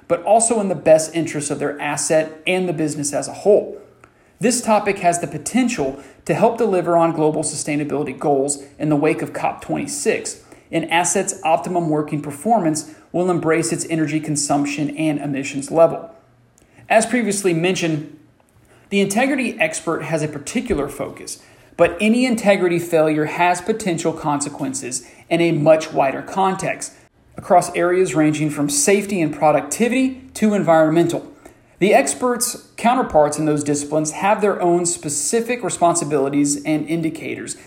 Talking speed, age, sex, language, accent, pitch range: 140 wpm, 40-59, male, English, American, 150-190 Hz